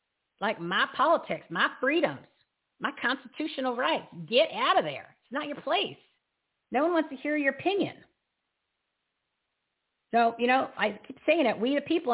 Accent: American